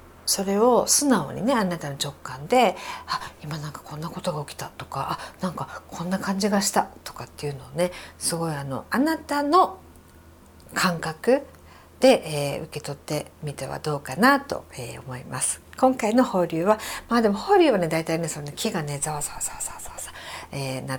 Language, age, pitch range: Japanese, 50-69, 130-205 Hz